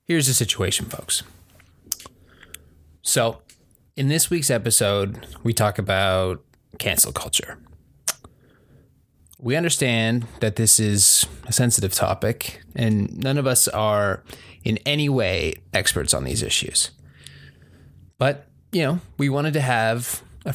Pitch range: 100-130 Hz